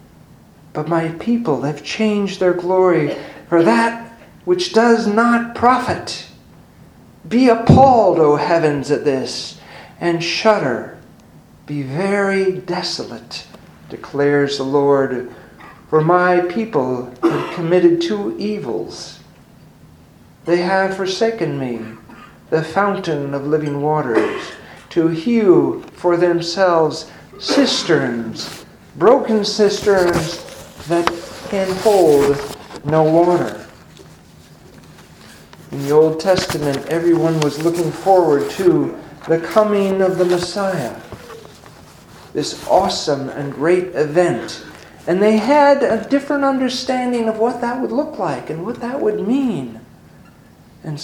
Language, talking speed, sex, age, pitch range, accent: English, 110 wpm, male, 50-69, 155-210 Hz, American